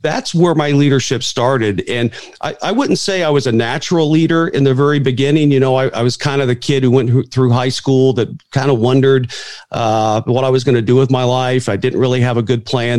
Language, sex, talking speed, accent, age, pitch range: English, male, 250 wpm, American, 40-59, 115-135 Hz